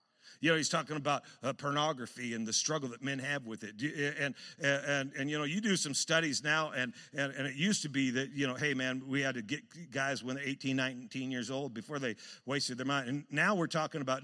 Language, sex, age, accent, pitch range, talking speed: English, male, 50-69, American, 130-155 Hz, 255 wpm